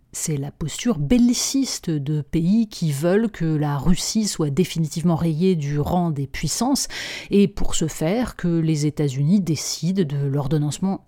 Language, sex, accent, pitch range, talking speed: French, female, French, 150-205 Hz, 150 wpm